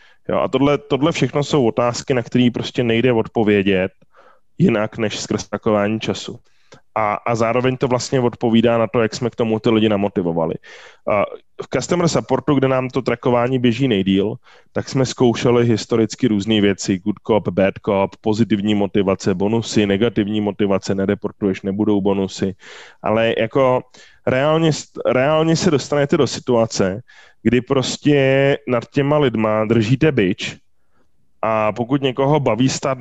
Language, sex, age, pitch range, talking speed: Czech, male, 20-39, 105-130 Hz, 145 wpm